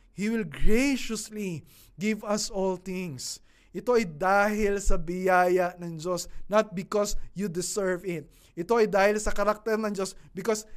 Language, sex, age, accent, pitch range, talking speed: Filipino, male, 20-39, native, 155-215 Hz, 150 wpm